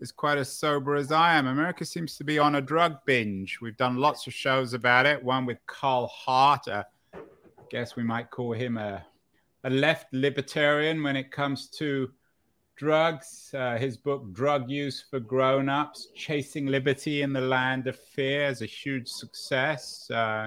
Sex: male